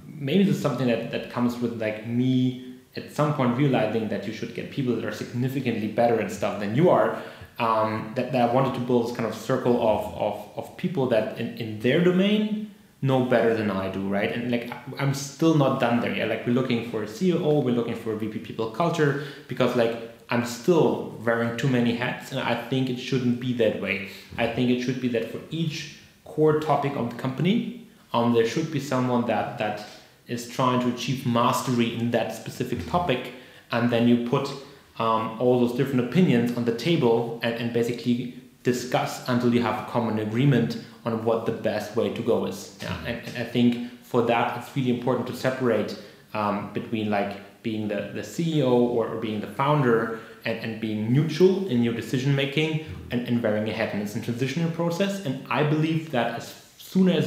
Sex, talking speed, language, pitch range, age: male, 205 wpm, English, 115-140 Hz, 30-49